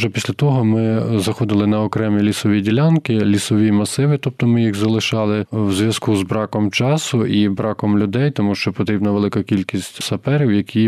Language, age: Ukrainian, 20-39